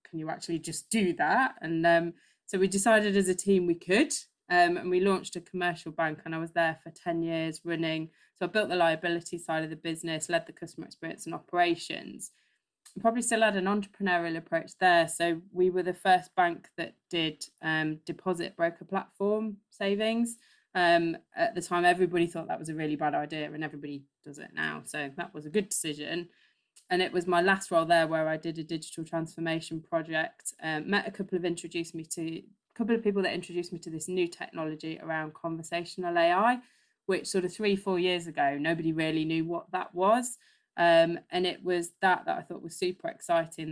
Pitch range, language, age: 160-185 Hz, English, 20-39